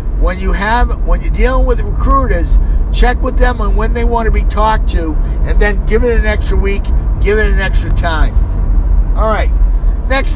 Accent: American